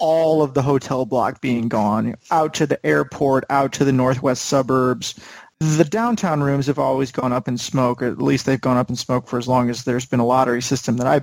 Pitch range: 125-145 Hz